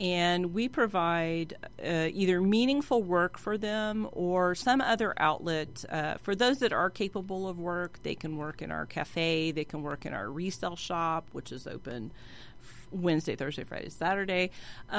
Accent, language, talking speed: American, English, 165 wpm